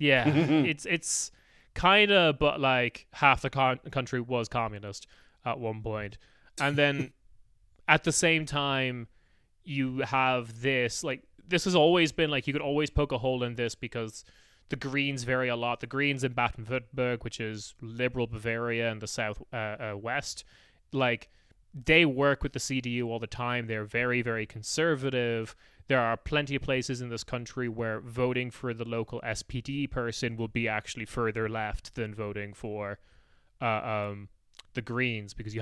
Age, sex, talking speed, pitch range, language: 20-39, male, 170 wpm, 110-135 Hz, English